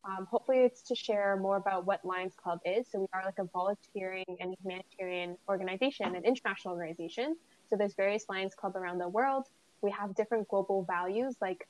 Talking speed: 190 wpm